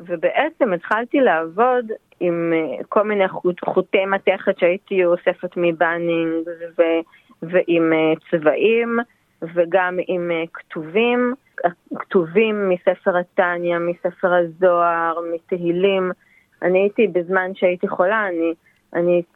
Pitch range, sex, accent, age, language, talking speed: 175-225 Hz, female, native, 30-49, Hebrew, 95 wpm